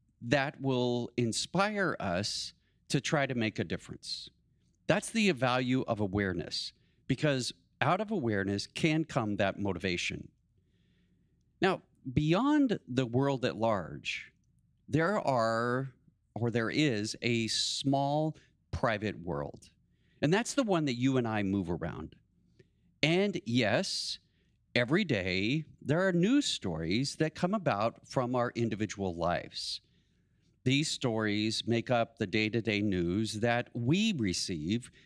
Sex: male